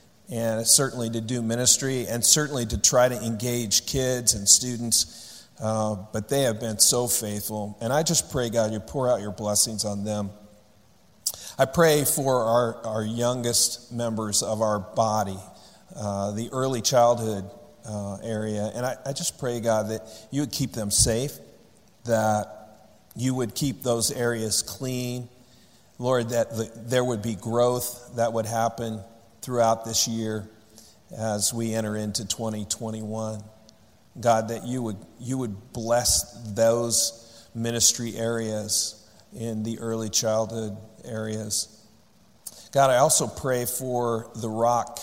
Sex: male